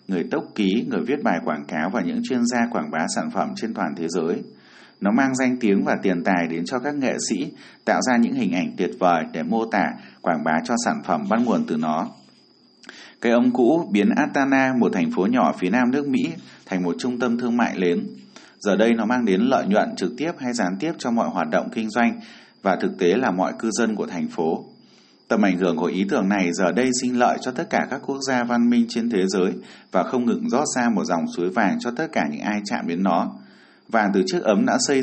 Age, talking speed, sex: 20-39, 245 wpm, male